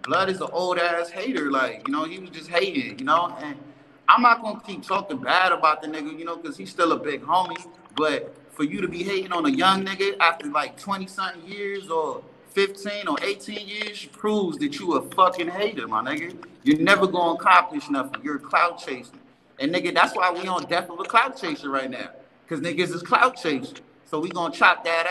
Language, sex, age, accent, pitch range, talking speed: English, male, 30-49, American, 165-210 Hz, 225 wpm